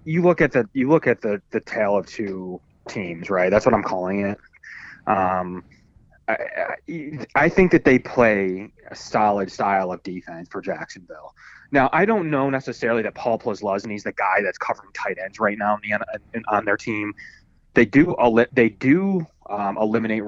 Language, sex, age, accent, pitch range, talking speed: English, male, 20-39, American, 95-120 Hz, 180 wpm